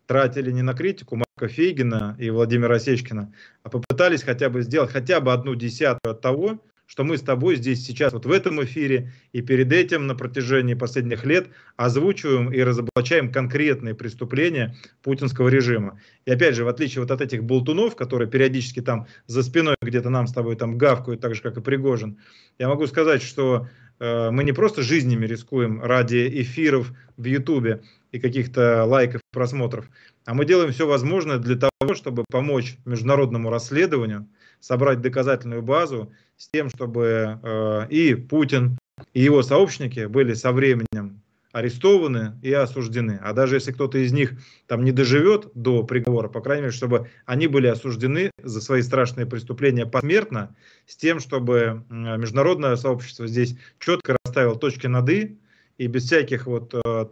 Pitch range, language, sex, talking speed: 120-135 Hz, Russian, male, 165 wpm